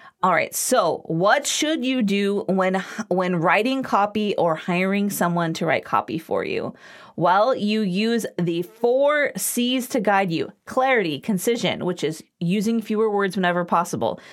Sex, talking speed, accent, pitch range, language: female, 155 wpm, American, 190-260 Hz, English